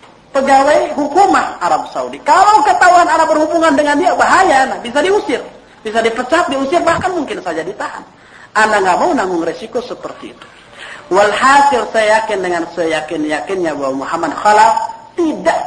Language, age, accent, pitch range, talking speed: Indonesian, 40-59, native, 165-230 Hz, 145 wpm